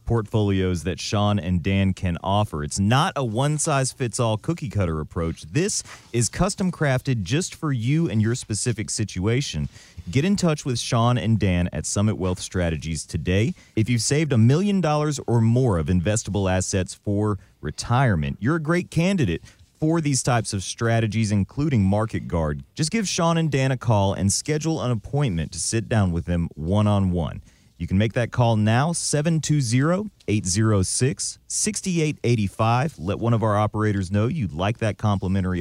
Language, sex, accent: English, male, American